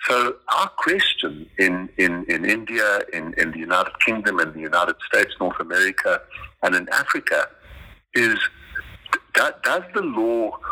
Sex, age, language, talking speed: male, 60-79, English, 145 wpm